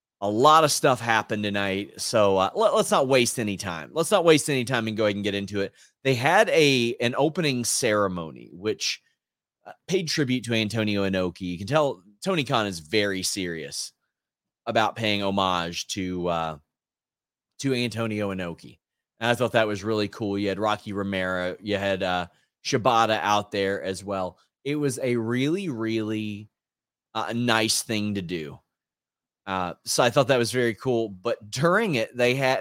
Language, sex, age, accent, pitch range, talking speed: English, male, 30-49, American, 100-130 Hz, 180 wpm